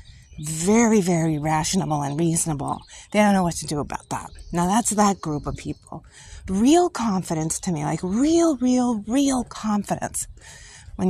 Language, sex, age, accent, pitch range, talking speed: English, female, 30-49, American, 170-215 Hz, 155 wpm